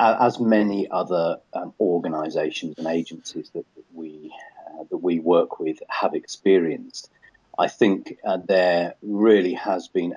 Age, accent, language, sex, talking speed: 40-59, British, English, male, 140 wpm